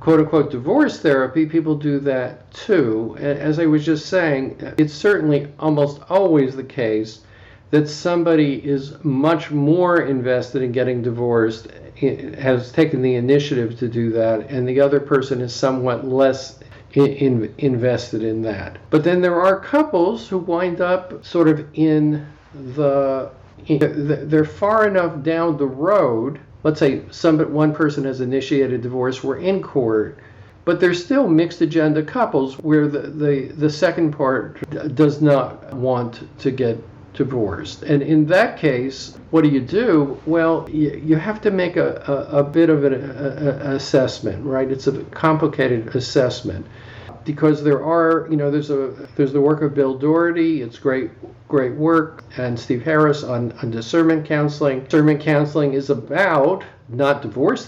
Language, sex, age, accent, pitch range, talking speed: English, male, 50-69, American, 125-155 Hz, 155 wpm